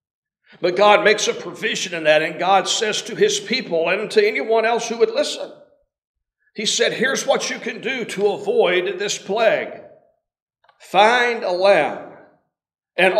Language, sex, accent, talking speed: English, male, American, 160 wpm